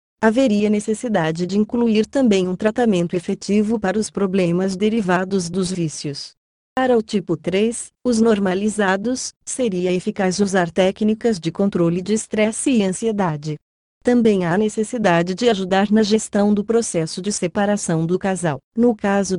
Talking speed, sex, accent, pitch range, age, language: 140 wpm, female, Brazilian, 180-220 Hz, 30-49, Portuguese